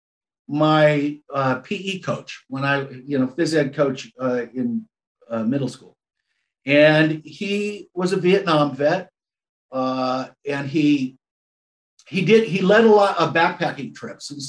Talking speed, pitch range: 145 wpm, 140-185 Hz